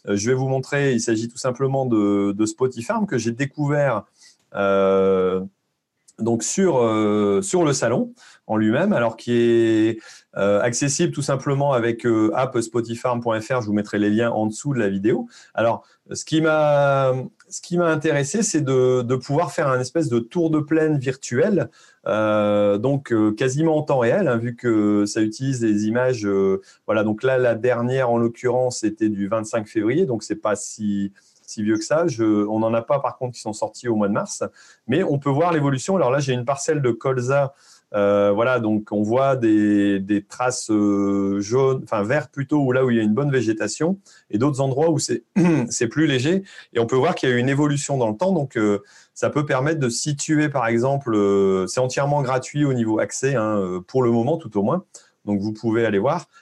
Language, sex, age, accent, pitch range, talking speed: French, male, 30-49, French, 105-140 Hz, 205 wpm